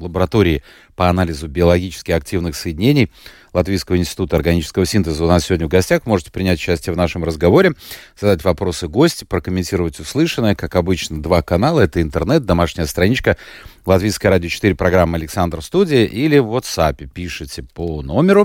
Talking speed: 150 wpm